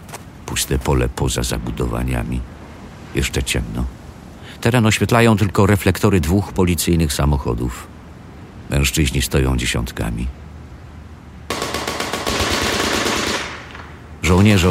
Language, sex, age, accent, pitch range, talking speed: Polish, male, 50-69, native, 70-90 Hz, 70 wpm